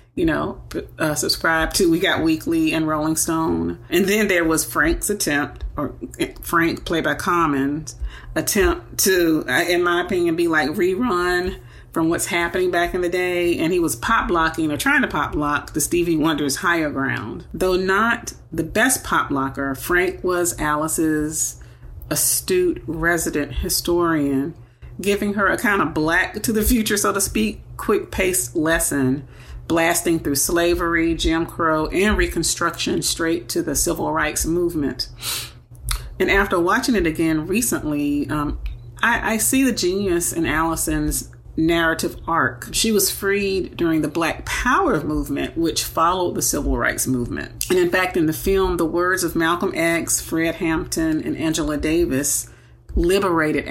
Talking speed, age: 150 wpm, 40-59